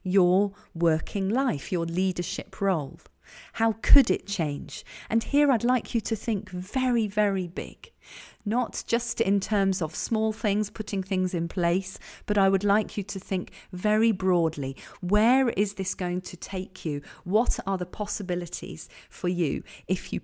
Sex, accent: female, British